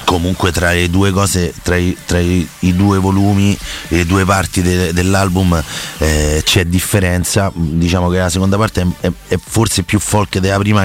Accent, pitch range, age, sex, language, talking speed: native, 85-100 Hz, 30-49, male, Italian, 185 wpm